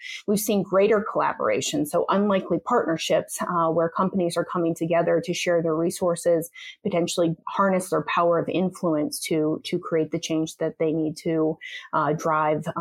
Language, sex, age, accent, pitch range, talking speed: English, female, 30-49, American, 160-190 Hz, 160 wpm